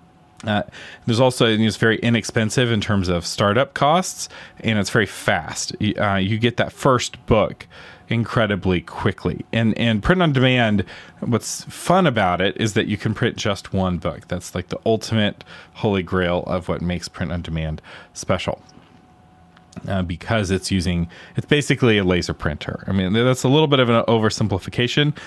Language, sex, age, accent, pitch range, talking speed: English, male, 30-49, American, 90-115 Hz, 160 wpm